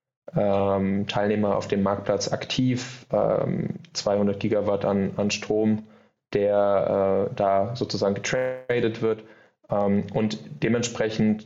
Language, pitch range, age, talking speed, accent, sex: German, 100-110 Hz, 20-39, 105 wpm, German, male